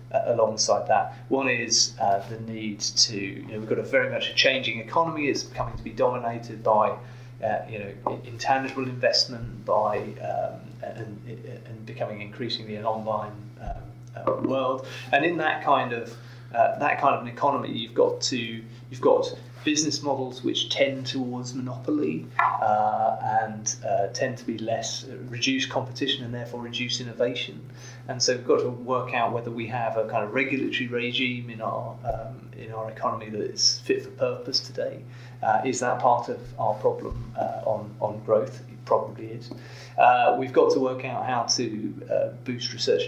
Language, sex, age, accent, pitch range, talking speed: English, male, 30-49, British, 115-130 Hz, 175 wpm